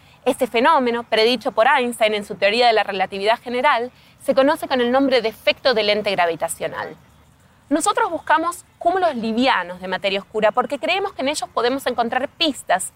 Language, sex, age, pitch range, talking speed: Spanish, female, 20-39, 200-295 Hz, 170 wpm